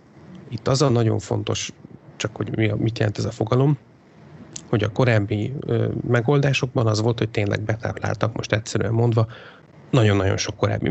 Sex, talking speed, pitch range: male, 165 wpm, 105-125 Hz